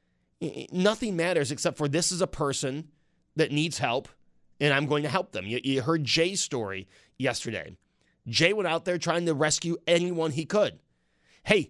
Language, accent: English, American